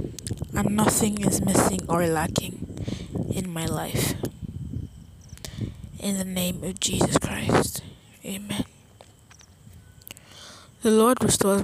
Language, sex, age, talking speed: English, female, 20-39, 100 wpm